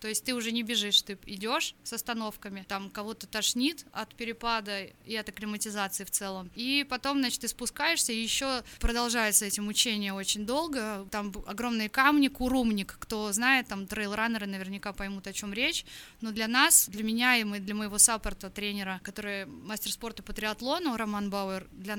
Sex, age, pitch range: female, 20-39, 210-245 Hz